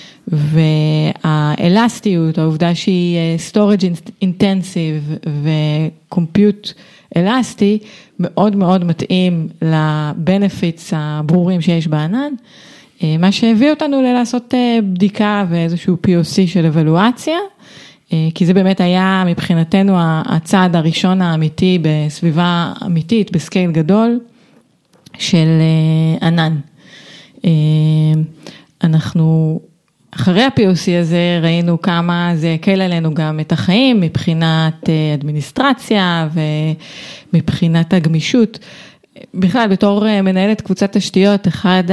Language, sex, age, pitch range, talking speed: Hebrew, female, 30-49, 165-195 Hz, 85 wpm